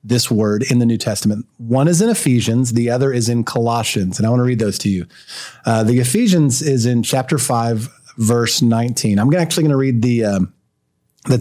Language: English